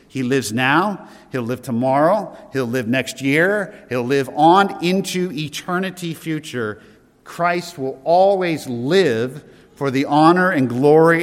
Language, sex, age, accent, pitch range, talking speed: English, male, 50-69, American, 130-170 Hz, 135 wpm